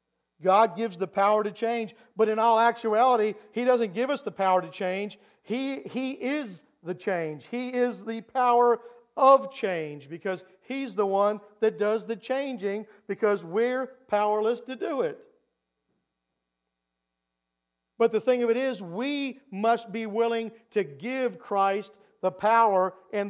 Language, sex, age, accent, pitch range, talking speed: English, male, 50-69, American, 170-220 Hz, 150 wpm